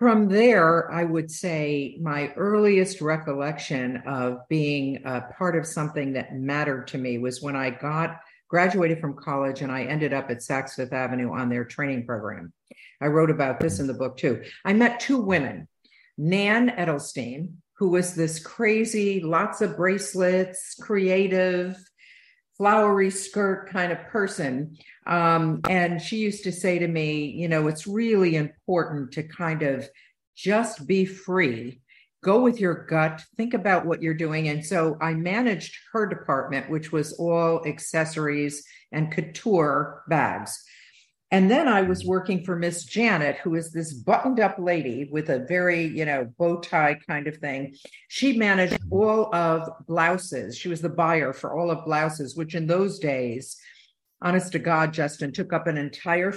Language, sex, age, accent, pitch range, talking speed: English, female, 50-69, American, 150-185 Hz, 165 wpm